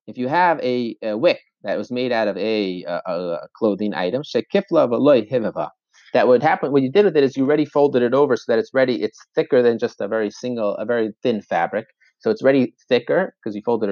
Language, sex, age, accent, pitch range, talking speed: English, male, 30-49, American, 120-155 Hz, 225 wpm